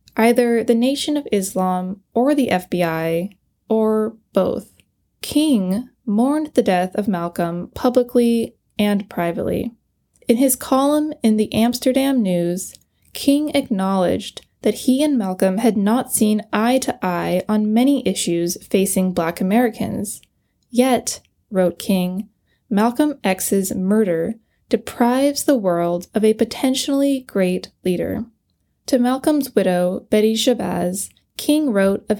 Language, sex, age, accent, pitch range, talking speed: English, female, 10-29, American, 185-250 Hz, 120 wpm